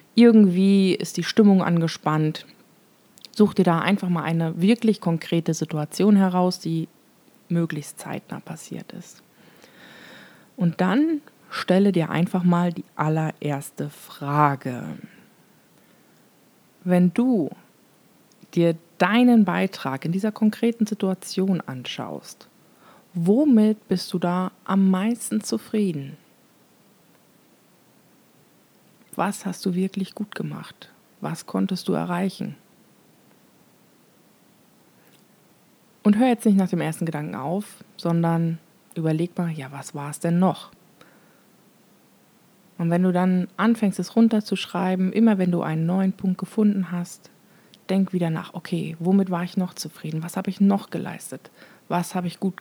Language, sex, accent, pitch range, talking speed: German, female, German, 170-200 Hz, 120 wpm